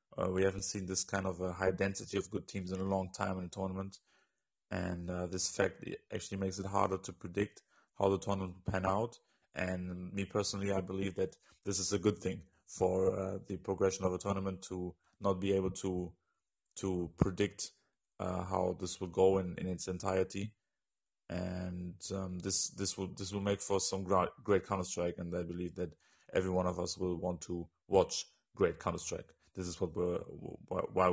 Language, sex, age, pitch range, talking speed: English, male, 30-49, 90-100 Hz, 195 wpm